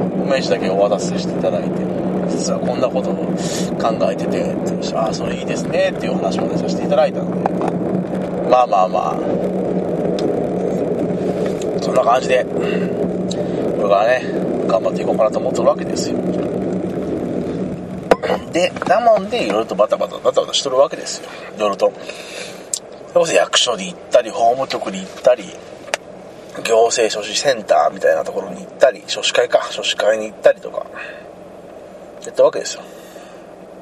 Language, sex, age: Japanese, male, 30-49